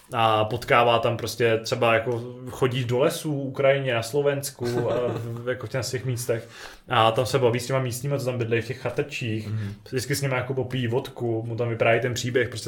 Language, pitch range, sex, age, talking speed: Czech, 110-135 Hz, male, 20-39, 195 wpm